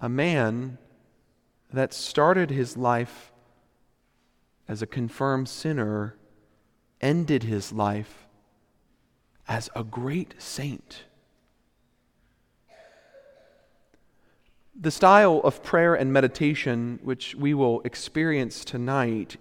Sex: male